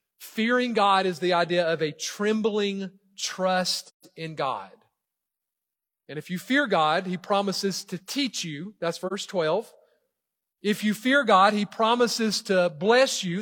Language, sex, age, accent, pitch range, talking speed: English, male, 40-59, American, 165-215 Hz, 150 wpm